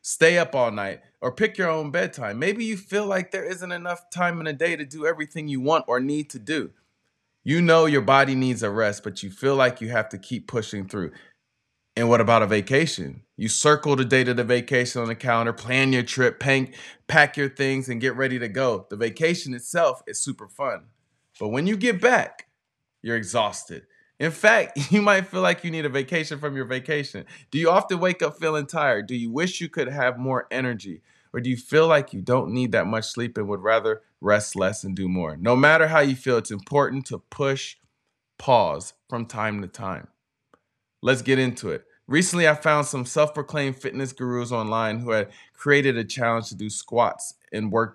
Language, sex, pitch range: English, male, 115-155 Hz